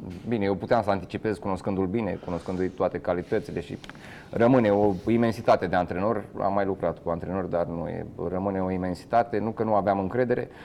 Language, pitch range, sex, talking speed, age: Romanian, 95-110 Hz, male, 175 wpm, 20-39